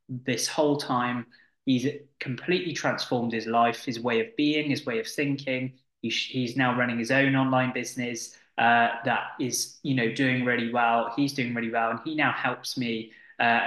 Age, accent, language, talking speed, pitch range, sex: 20-39, British, English, 180 wpm, 120-145 Hz, male